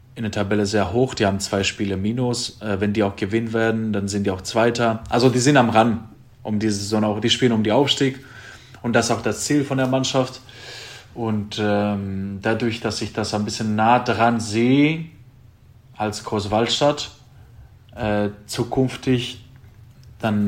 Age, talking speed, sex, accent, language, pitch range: 20-39, 165 wpm, male, German, German, 100-120 Hz